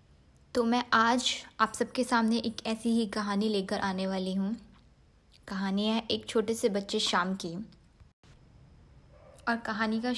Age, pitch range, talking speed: 20-39, 200-260 Hz, 145 wpm